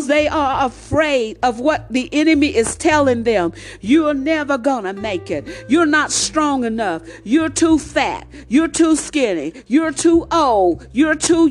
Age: 50-69